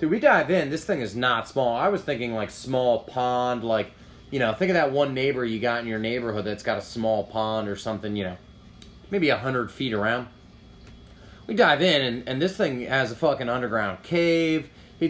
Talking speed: 220 wpm